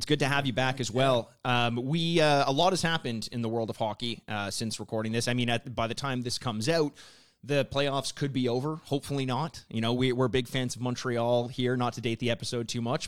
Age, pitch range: 30-49, 110-140 Hz